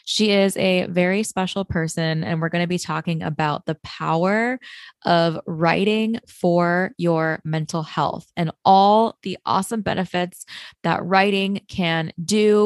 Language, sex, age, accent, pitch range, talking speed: English, female, 20-39, American, 170-220 Hz, 140 wpm